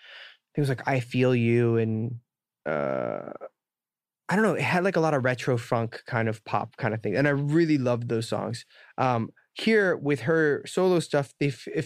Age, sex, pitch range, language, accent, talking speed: 20-39, male, 115-140 Hz, English, American, 190 wpm